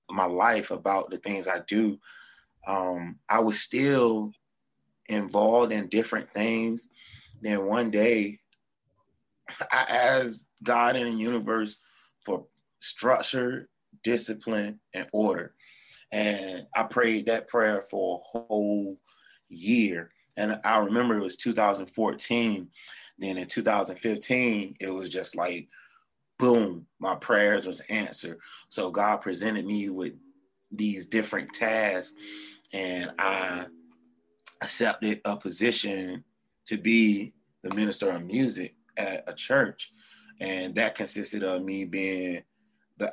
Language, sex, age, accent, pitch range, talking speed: English, male, 30-49, American, 95-115 Hz, 120 wpm